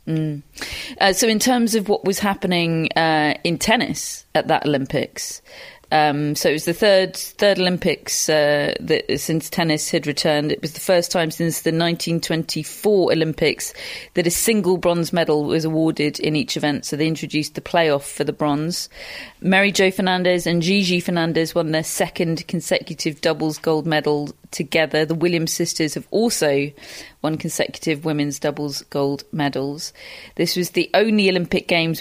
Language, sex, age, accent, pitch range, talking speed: English, female, 40-59, British, 150-180 Hz, 165 wpm